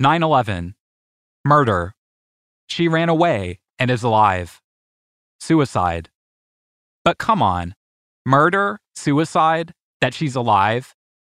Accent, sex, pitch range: American, male, 100-165 Hz